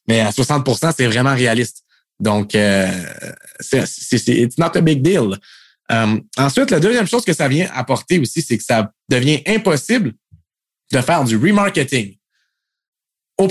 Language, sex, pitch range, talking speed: French, male, 110-145 Hz, 160 wpm